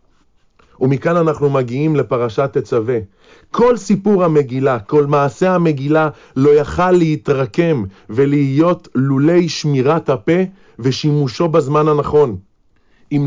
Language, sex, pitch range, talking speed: Hebrew, male, 140-190 Hz, 100 wpm